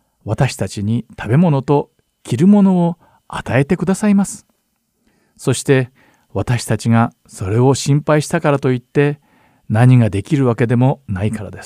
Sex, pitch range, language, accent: male, 110-145 Hz, Japanese, native